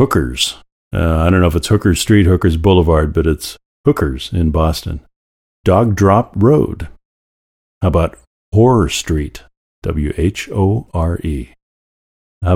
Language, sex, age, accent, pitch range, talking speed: English, male, 50-69, American, 70-95 Hz, 140 wpm